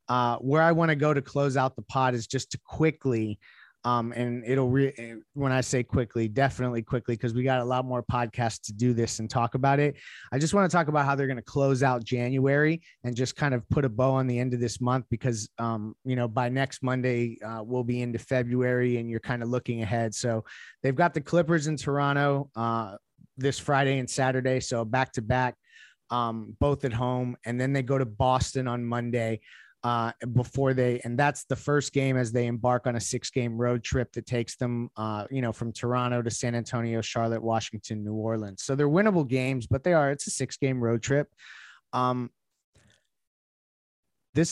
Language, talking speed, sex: English, 210 wpm, male